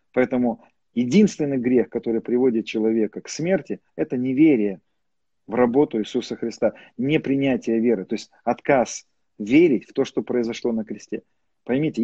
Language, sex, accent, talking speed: Russian, male, native, 135 wpm